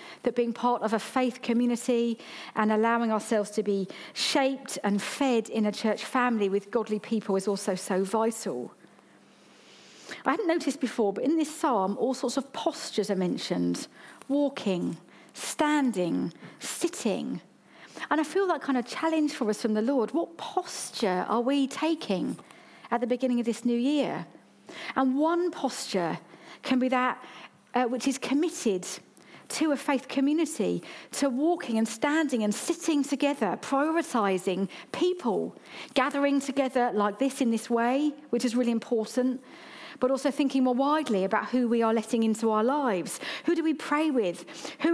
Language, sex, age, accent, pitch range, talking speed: English, female, 40-59, British, 225-290 Hz, 160 wpm